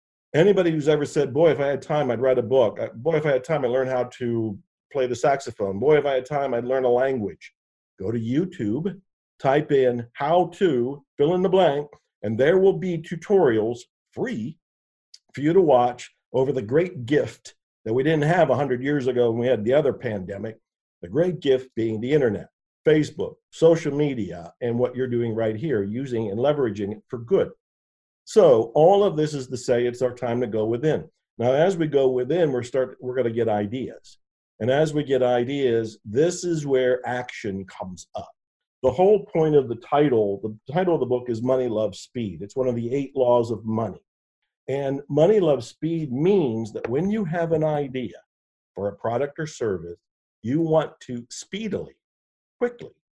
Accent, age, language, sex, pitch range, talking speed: American, 50-69, English, male, 115-155 Hz, 195 wpm